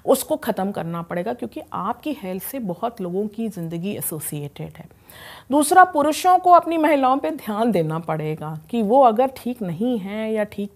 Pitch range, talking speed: 175-245 Hz, 175 wpm